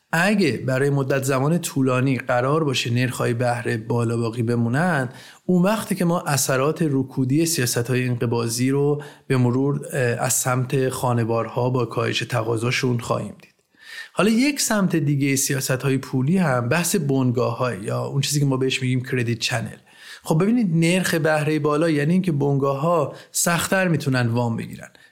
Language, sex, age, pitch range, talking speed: Persian, male, 30-49, 125-165 Hz, 150 wpm